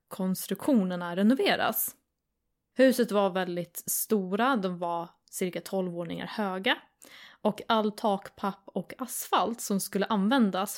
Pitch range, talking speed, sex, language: 185-225 Hz, 110 wpm, female, Swedish